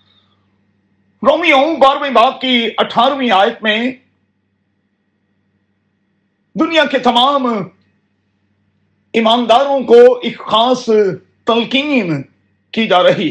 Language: Urdu